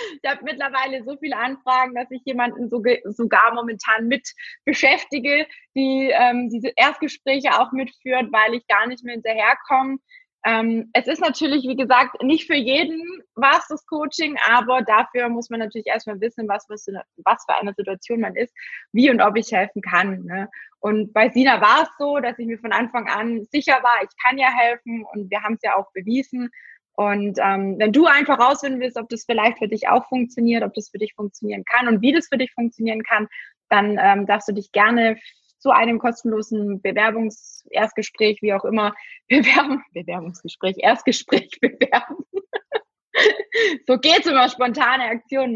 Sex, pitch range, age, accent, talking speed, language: female, 210-270 Hz, 20-39, German, 170 wpm, German